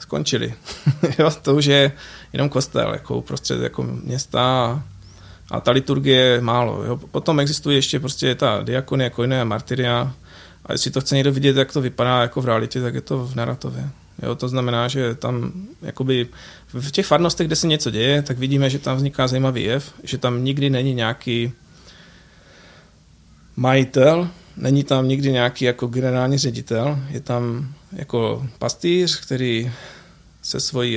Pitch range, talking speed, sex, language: 115-135 Hz, 160 wpm, male, Czech